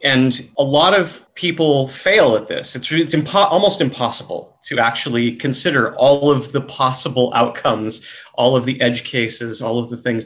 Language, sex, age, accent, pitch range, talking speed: English, male, 30-49, American, 125-155 Hz, 170 wpm